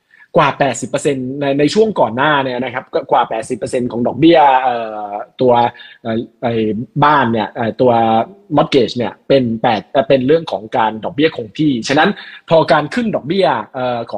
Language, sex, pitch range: Thai, male, 120-165 Hz